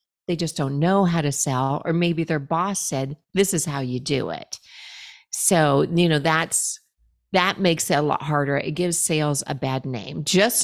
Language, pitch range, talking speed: English, 140-175 Hz, 195 wpm